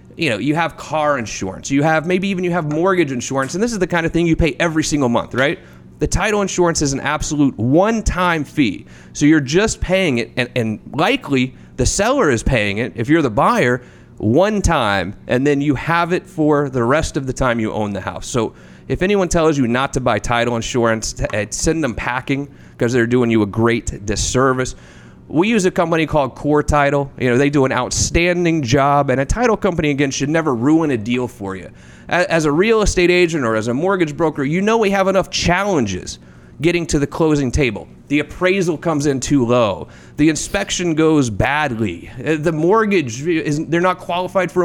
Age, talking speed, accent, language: 30-49, 205 wpm, American, English